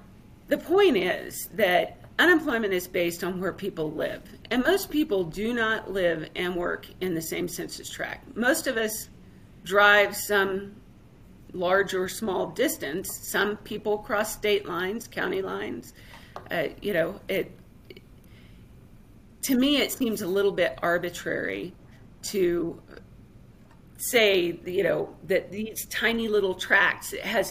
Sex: female